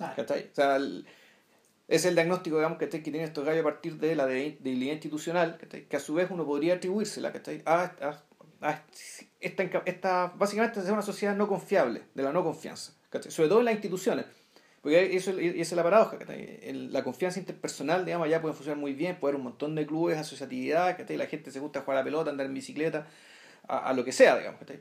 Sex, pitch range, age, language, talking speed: male, 145-180 Hz, 40-59, Spanish, 240 wpm